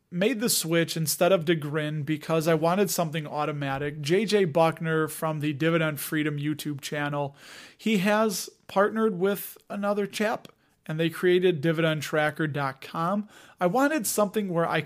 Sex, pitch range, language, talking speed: male, 150-180 Hz, English, 135 wpm